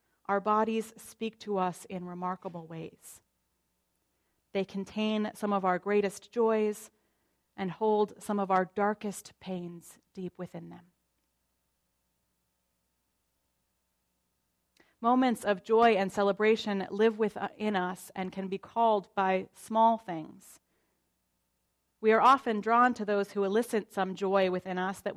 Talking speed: 130 wpm